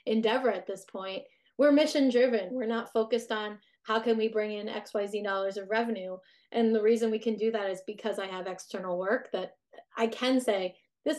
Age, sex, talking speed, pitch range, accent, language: 20-39, female, 205 wpm, 200-235 Hz, American, English